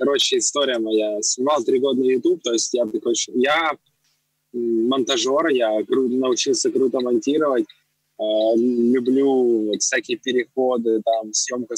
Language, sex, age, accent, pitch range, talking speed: Russian, male, 20-39, native, 115-160 Hz, 105 wpm